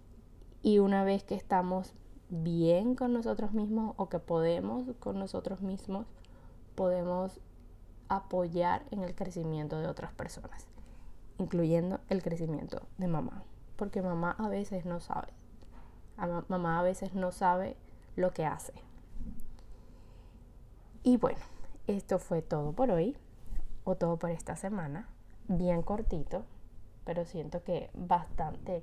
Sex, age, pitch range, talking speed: female, 10-29, 155-195 Hz, 125 wpm